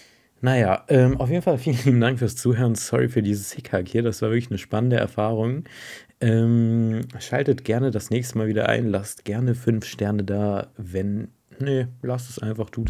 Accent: German